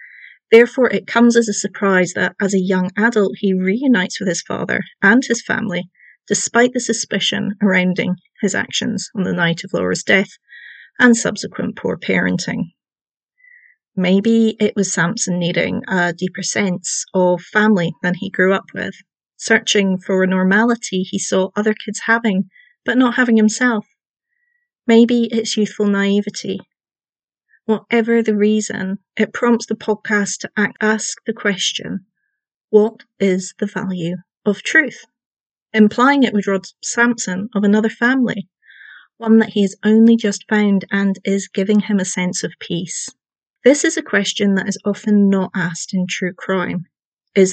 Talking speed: 150 wpm